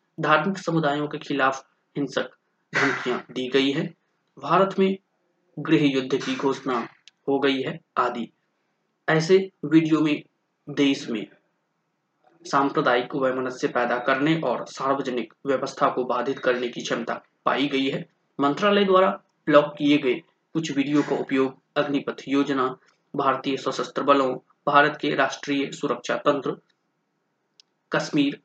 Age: 20-39